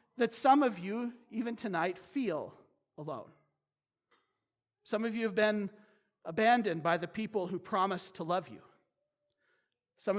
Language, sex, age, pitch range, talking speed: English, male, 40-59, 190-260 Hz, 135 wpm